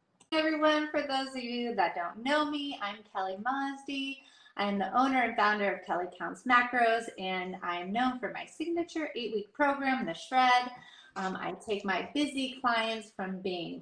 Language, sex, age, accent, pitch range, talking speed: English, female, 30-49, American, 195-255 Hz, 180 wpm